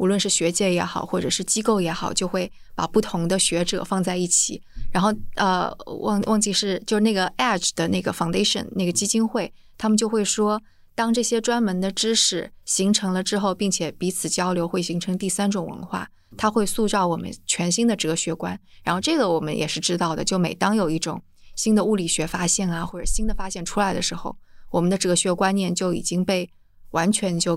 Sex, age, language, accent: female, 20-39, Chinese, native